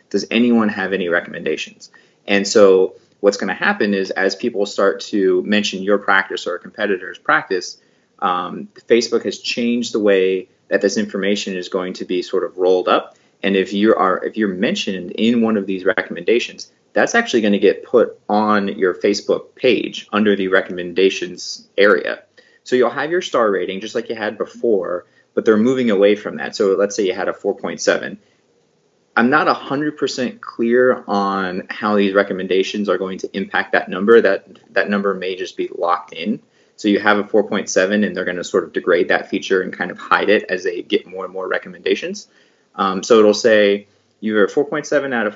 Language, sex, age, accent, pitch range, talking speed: English, male, 30-49, American, 100-150 Hz, 195 wpm